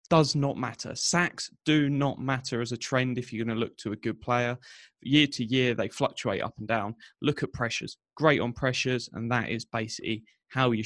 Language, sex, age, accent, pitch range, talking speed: English, male, 20-39, British, 115-140 Hz, 215 wpm